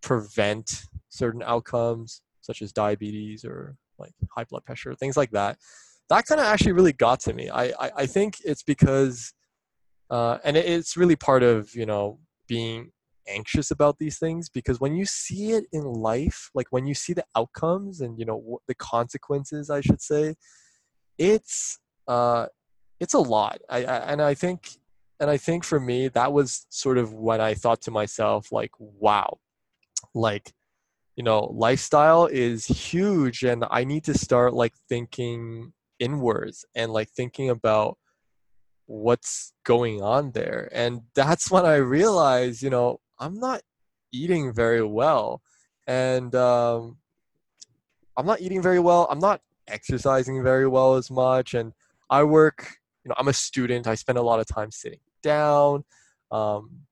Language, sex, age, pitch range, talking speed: English, male, 20-39, 115-145 Hz, 160 wpm